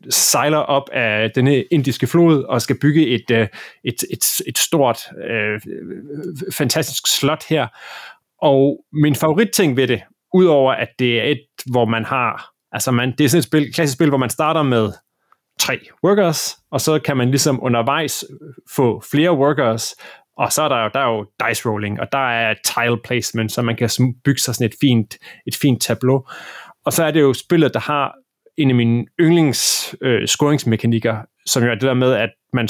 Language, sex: Danish, male